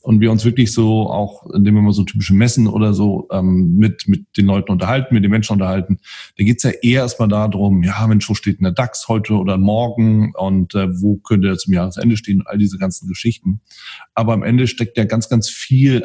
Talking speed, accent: 225 wpm, German